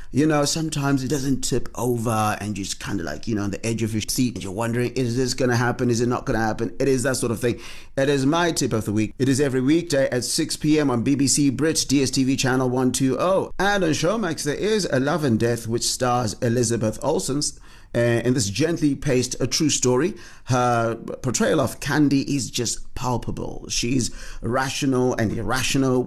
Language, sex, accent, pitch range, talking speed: English, male, British, 115-140 Hz, 210 wpm